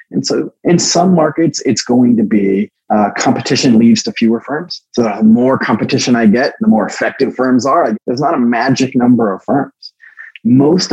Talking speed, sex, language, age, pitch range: 185 wpm, male, English, 30-49, 115-175 Hz